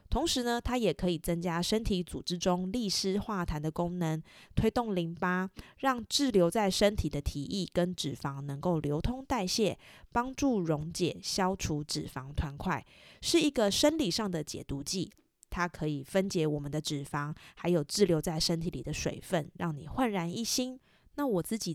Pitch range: 150-185 Hz